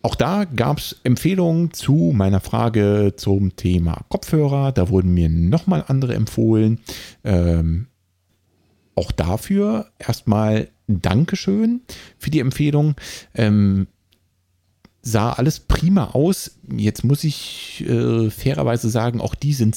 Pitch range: 95-130 Hz